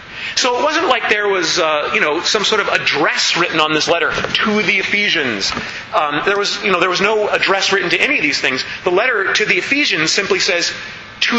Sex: male